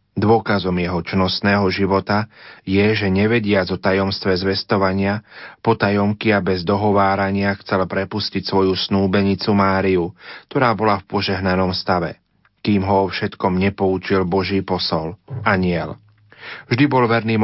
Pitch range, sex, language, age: 95-105 Hz, male, Slovak, 40-59